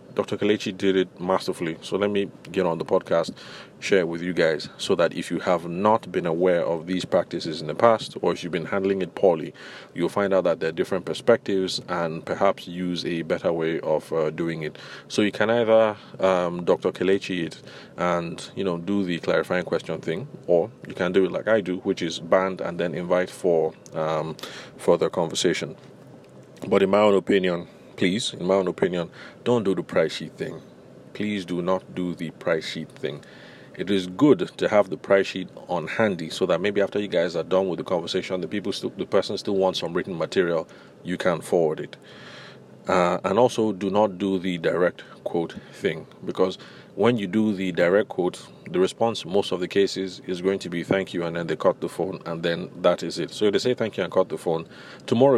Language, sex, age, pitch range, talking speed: English, male, 30-49, 90-100 Hz, 215 wpm